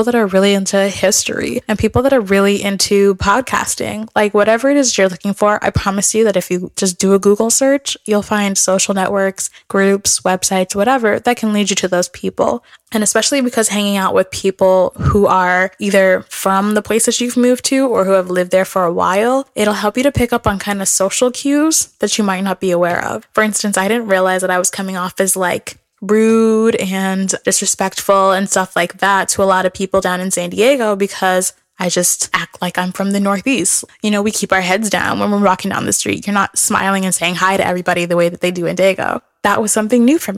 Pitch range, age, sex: 190-220 Hz, 10-29, female